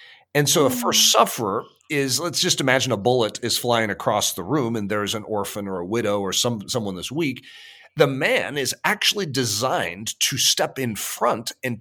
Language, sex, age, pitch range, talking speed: English, male, 40-59, 115-170 Hz, 190 wpm